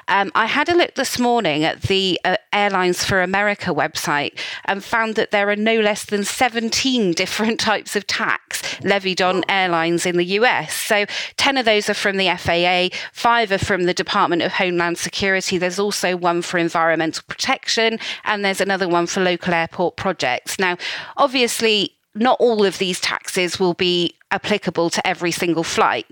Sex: female